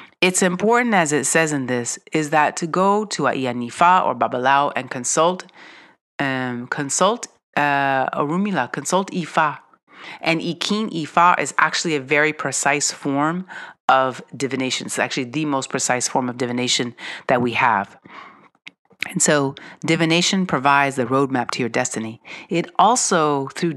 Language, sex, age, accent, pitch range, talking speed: English, female, 40-59, American, 130-175 Hz, 145 wpm